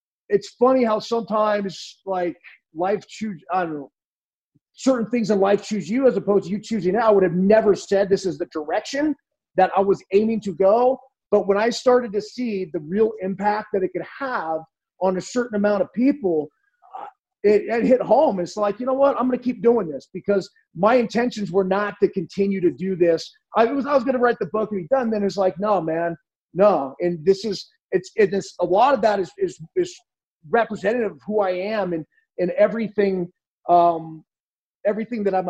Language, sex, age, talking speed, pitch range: English, male, 30-49, 210 wpm, 185-240 Hz